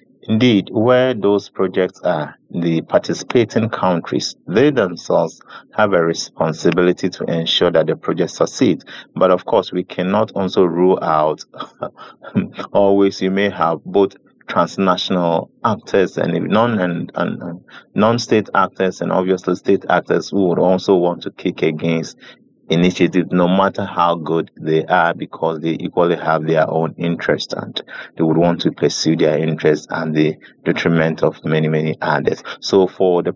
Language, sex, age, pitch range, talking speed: English, male, 30-49, 85-100 Hz, 150 wpm